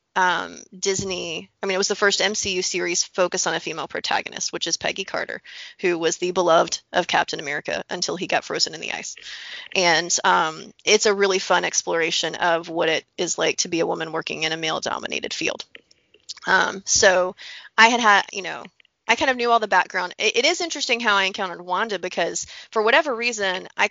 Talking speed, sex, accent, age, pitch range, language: 205 wpm, female, American, 20-39, 185-225 Hz, English